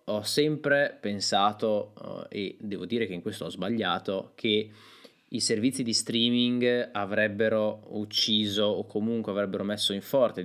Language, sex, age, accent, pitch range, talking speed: Italian, male, 20-39, native, 95-120 Hz, 140 wpm